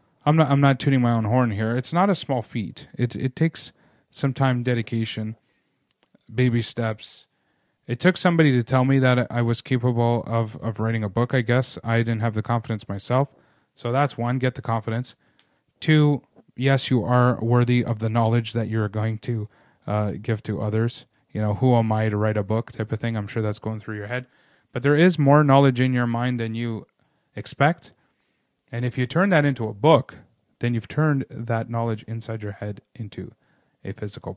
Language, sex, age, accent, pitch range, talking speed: English, male, 30-49, American, 110-130 Hz, 205 wpm